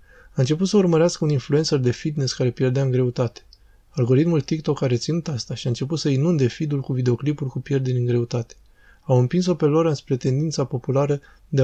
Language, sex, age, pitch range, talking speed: Romanian, male, 20-39, 125-150 Hz, 190 wpm